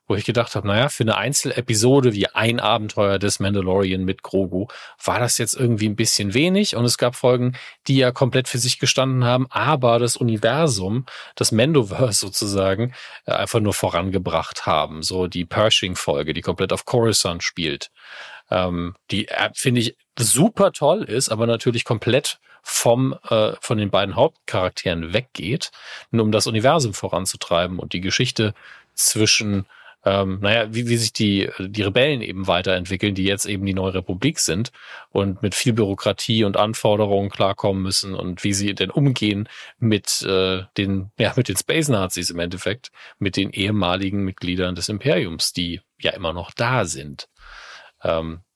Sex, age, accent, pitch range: male, 40-59, German, 95-120 Hz